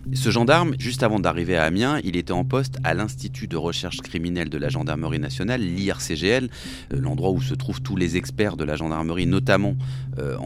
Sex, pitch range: male, 90-130 Hz